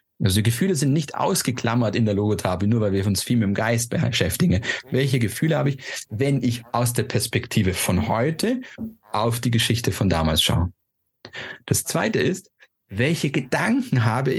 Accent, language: German, German